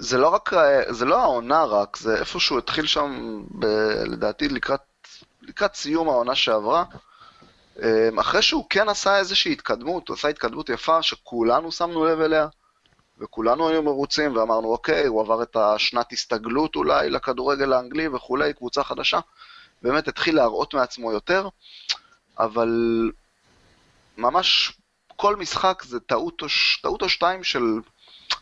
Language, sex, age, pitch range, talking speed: Hebrew, male, 30-49, 120-165 Hz, 140 wpm